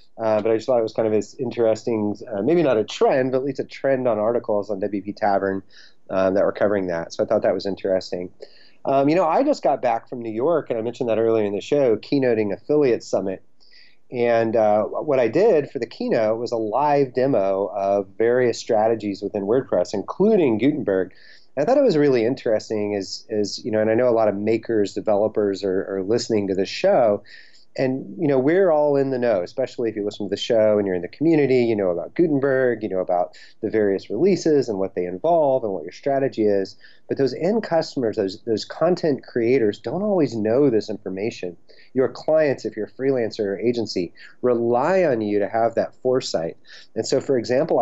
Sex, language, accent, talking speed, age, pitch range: male, English, American, 215 wpm, 30-49, 105-125 Hz